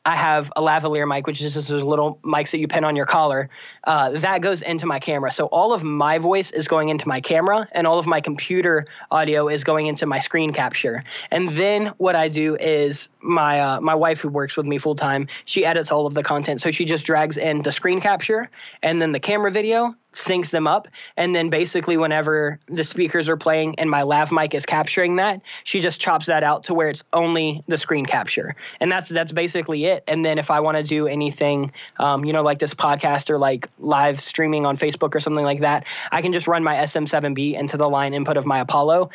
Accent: American